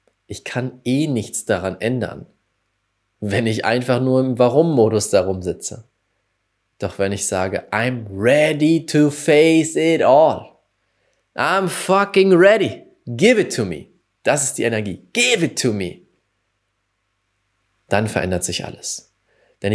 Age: 20-39